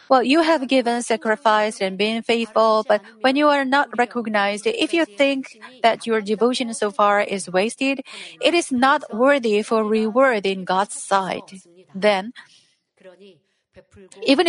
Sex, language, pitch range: female, Korean, 205-255 Hz